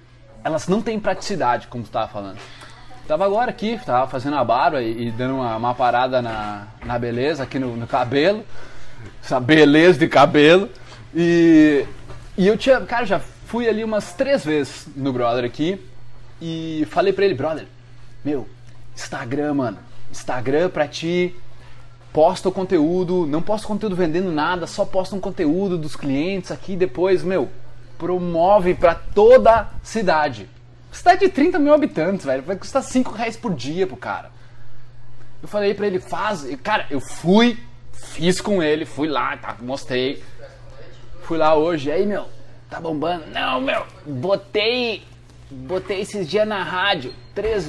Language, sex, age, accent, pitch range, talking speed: Portuguese, male, 20-39, Brazilian, 125-190 Hz, 160 wpm